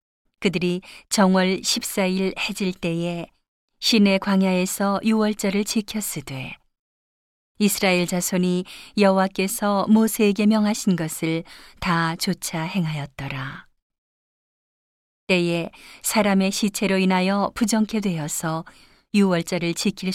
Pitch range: 170-205 Hz